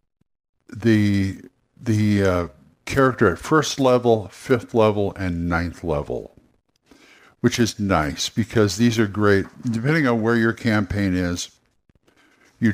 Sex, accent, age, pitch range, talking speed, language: male, American, 60-79, 95-120 Hz, 120 wpm, English